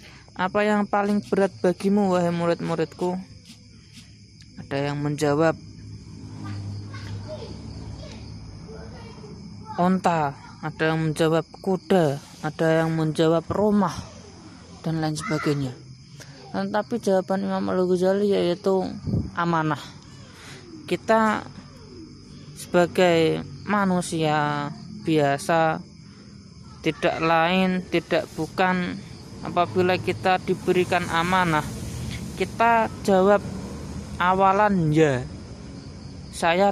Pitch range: 145-190 Hz